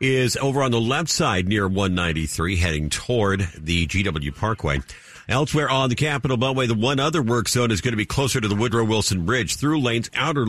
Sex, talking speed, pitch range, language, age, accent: male, 200 wpm, 100-130 Hz, English, 50-69, American